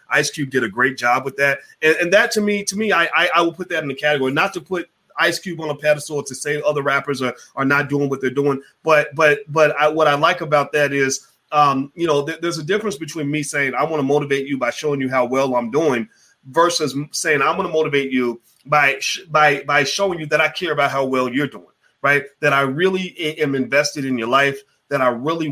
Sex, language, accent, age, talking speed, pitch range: male, English, American, 30-49, 255 wpm, 135-160 Hz